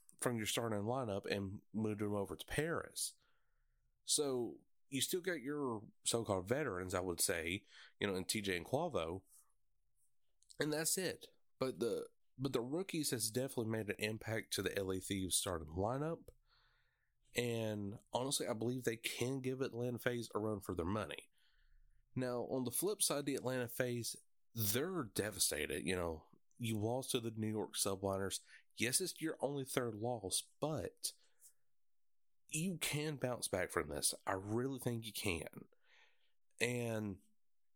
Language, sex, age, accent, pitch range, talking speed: English, male, 30-49, American, 105-140 Hz, 155 wpm